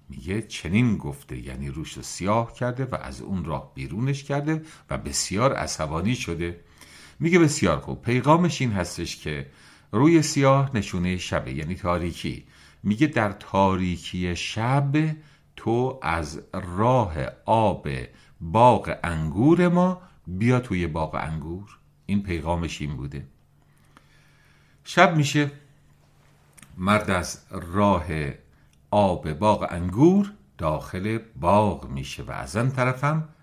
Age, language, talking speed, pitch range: 50-69, English, 115 wpm, 85-140 Hz